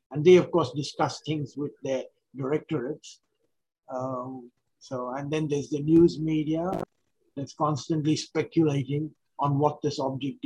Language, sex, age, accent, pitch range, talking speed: English, male, 50-69, Indian, 130-150 Hz, 140 wpm